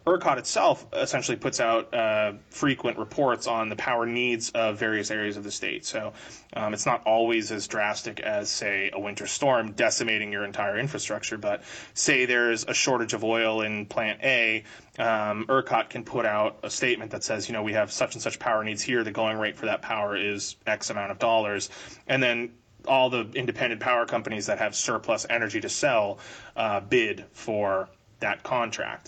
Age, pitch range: 20-39, 105-120 Hz